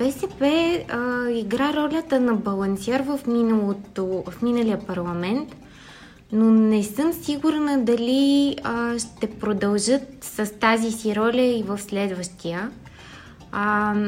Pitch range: 205-240 Hz